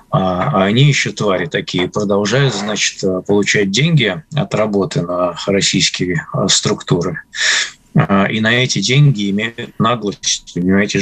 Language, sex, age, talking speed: Russian, male, 20-39, 115 wpm